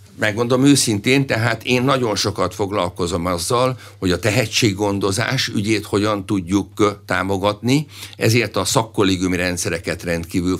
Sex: male